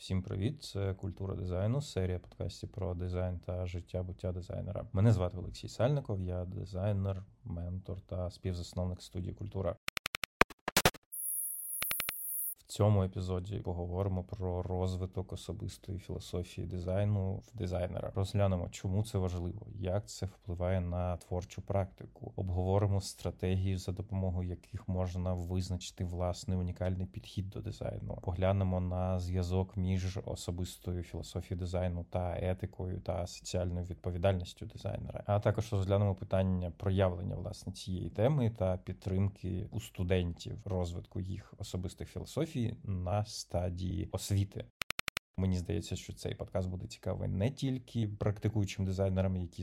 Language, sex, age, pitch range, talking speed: Ukrainian, male, 30-49, 90-100 Hz, 120 wpm